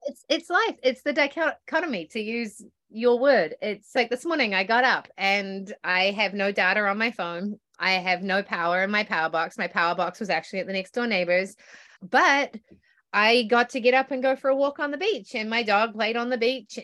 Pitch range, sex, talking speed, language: 205-275 Hz, female, 230 wpm, English